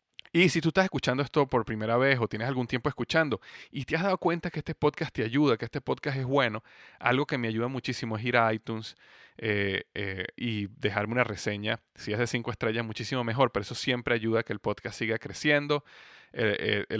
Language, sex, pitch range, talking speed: Spanish, male, 115-135 Hz, 220 wpm